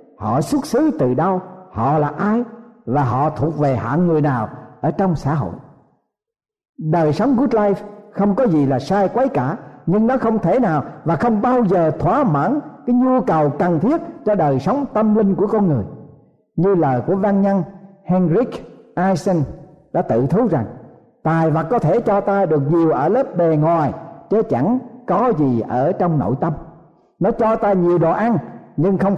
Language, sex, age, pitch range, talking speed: Vietnamese, male, 60-79, 150-210 Hz, 190 wpm